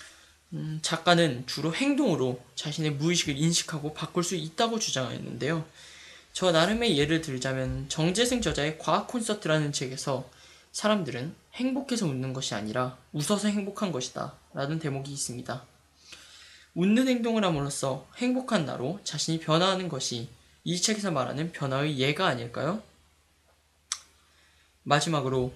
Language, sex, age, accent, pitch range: Korean, male, 20-39, native, 130-185 Hz